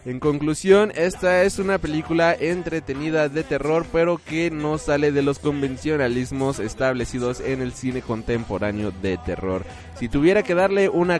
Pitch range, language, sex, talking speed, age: 130-175 Hz, Spanish, male, 150 wpm, 20-39